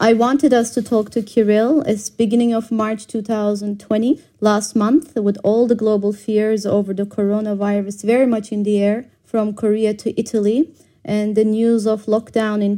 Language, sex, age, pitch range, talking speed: Russian, female, 30-49, 205-240 Hz, 175 wpm